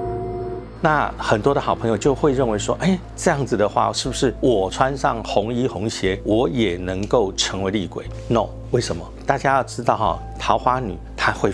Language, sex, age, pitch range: Chinese, male, 50-69, 100-130 Hz